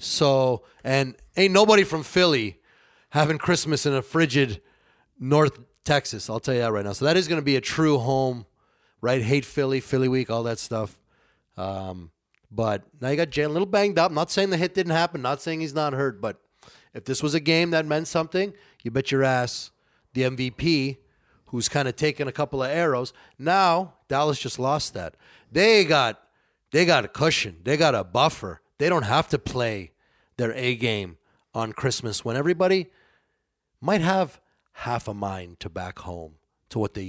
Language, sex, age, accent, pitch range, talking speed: English, male, 30-49, American, 110-155 Hz, 190 wpm